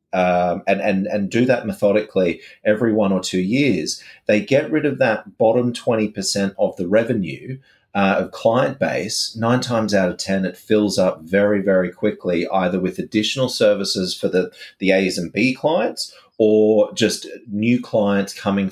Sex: male